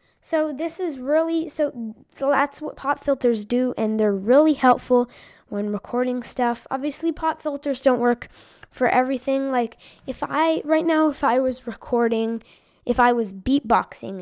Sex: female